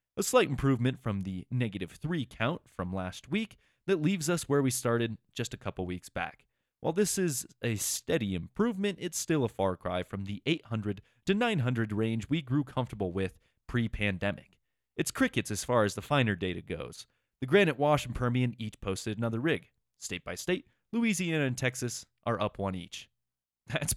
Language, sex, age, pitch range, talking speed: English, male, 30-49, 105-160 Hz, 185 wpm